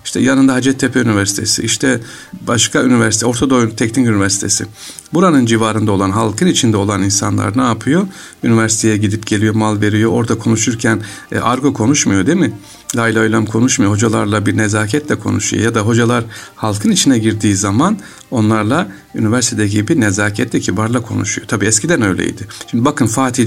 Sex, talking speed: male, 150 wpm